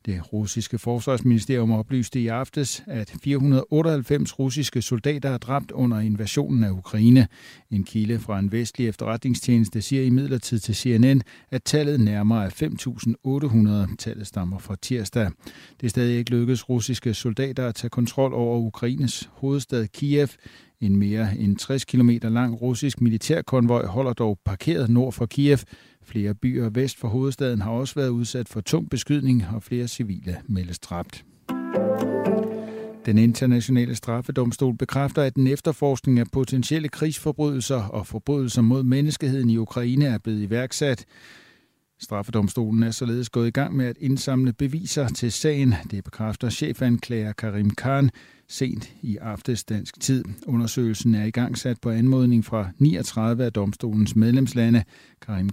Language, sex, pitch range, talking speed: Danish, male, 110-135 Hz, 145 wpm